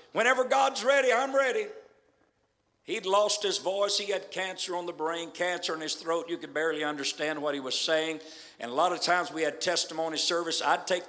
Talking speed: 205 wpm